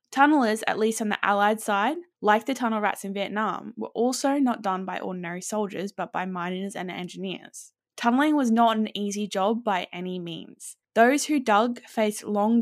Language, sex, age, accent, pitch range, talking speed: English, female, 10-29, Australian, 195-240 Hz, 185 wpm